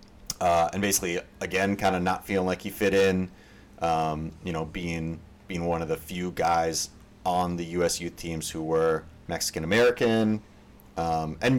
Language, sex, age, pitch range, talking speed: English, male, 30-49, 80-100 Hz, 165 wpm